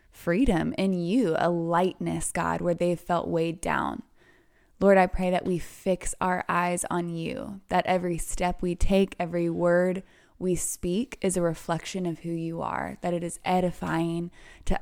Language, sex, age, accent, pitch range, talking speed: English, female, 20-39, American, 165-180 Hz, 175 wpm